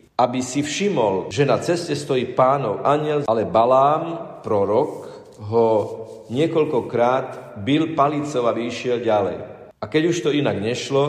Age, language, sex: 40-59, Slovak, male